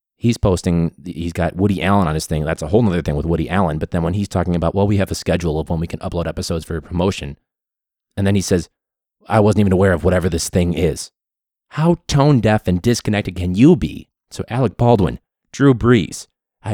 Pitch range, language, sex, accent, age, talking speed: 85-110 Hz, English, male, American, 30-49, 225 wpm